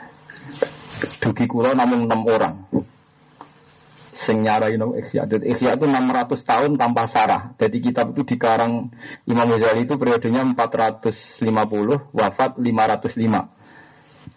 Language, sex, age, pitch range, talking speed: Malay, male, 40-59, 115-155 Hz, 115 wpm